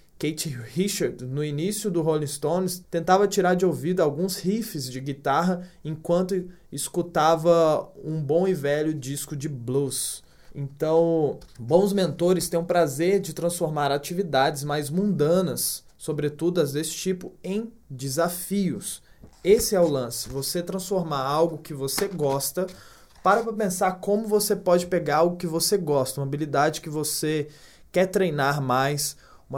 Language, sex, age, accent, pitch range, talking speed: Portuguese, male, 20-39, Brazilian, 150-180 Hz, 140 wpm